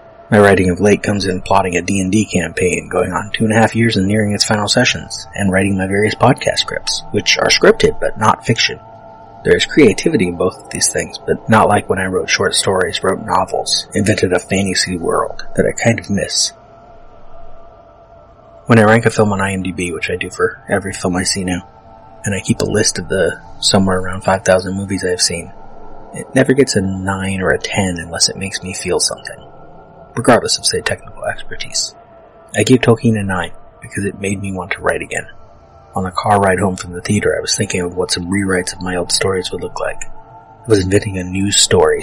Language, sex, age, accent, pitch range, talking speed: English, male, 30-49, American, 95-110 Hz, 215 wpm